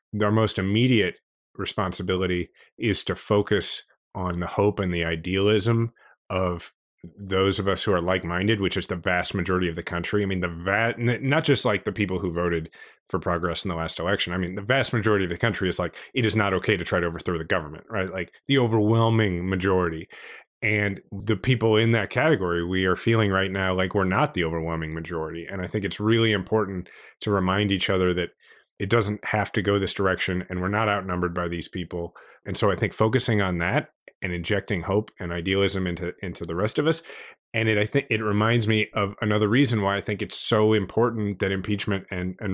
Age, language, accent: 30-49, English, American